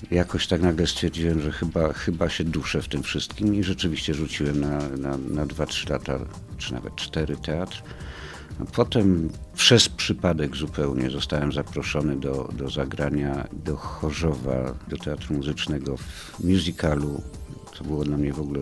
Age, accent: 50-69, native